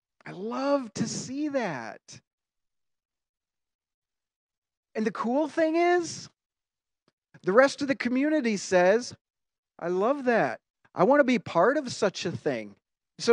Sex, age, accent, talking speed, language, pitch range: male, 40-59, American, 130 wpm, English, 150-205 Hz